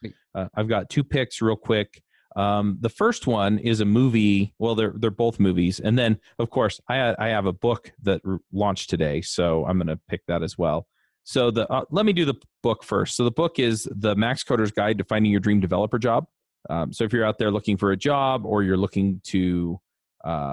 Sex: male